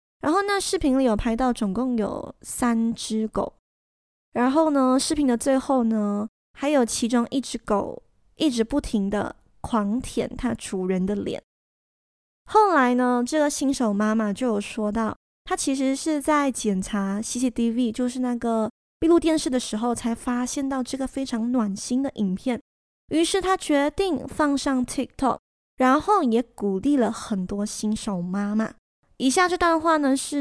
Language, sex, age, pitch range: Chinese, female, 20-39, 225-280 Hz